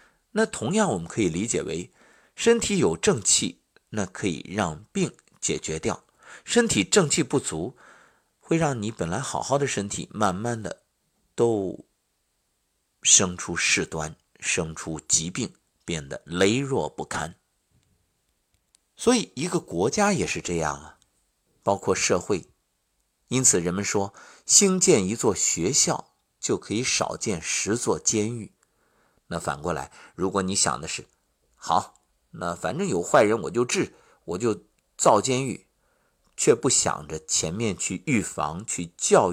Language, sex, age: Chinese, male, 50-69